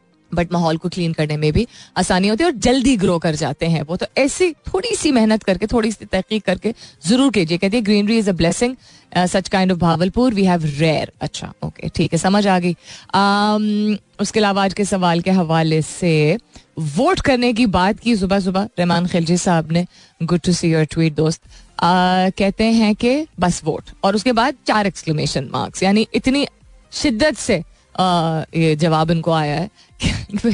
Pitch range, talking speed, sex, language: 165-220 Hz, 185 wpm, female, Hindi